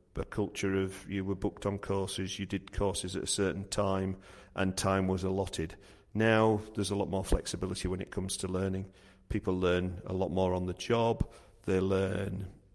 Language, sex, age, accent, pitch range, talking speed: English, male, 40-59, British, 95-100 Hz, 190 wpm